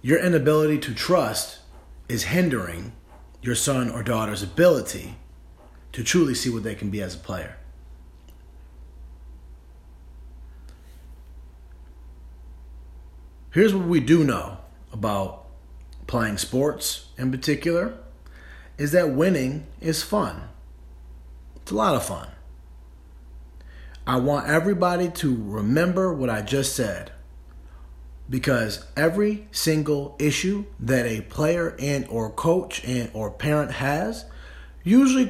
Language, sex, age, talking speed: English, male, 30-49, 110 wpm